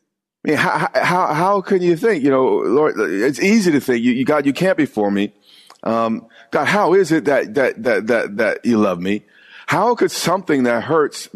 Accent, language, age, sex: American, English, 40-59, male